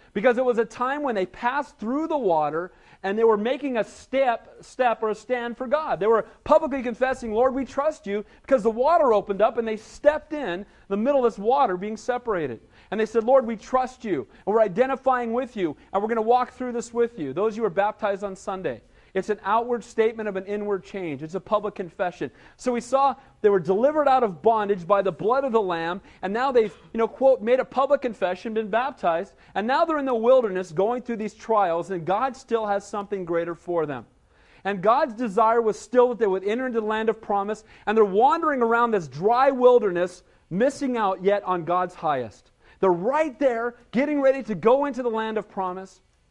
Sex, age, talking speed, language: male, 40-59, 225 wpm, English